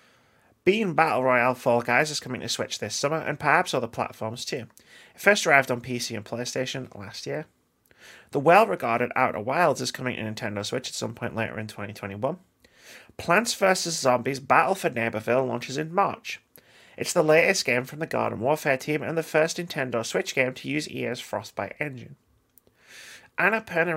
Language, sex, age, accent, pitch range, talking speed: English, male, 30-49, British, 115-160 Hz, 175 wpm